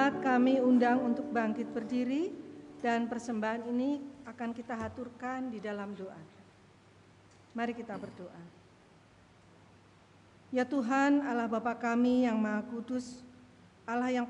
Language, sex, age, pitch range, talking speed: Indonesian, female, 50-69, 230-265 Hz, 110 wpm